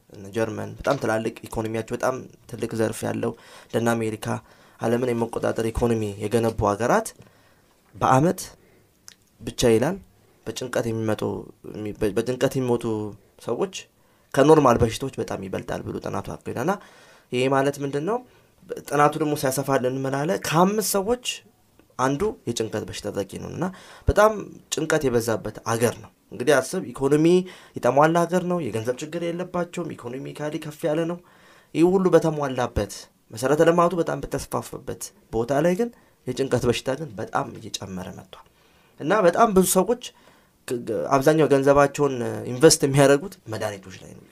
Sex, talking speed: male, 95 wpm